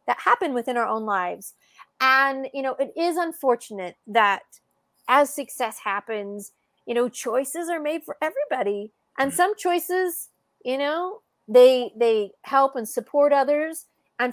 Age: 30-49